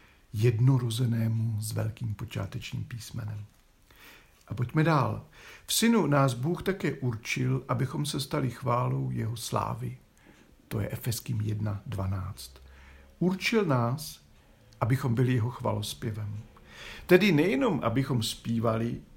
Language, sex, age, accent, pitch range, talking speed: Czech, male, 60-79, native, 110-145 Hz, 105 wpm